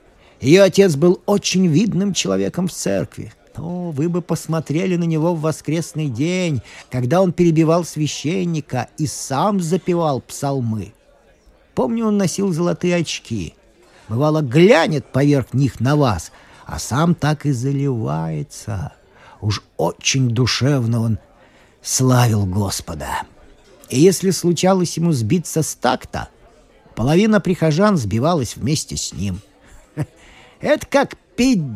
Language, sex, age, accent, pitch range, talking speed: Russian, male, 50-69, native, 120-180 Hz, 120 wpm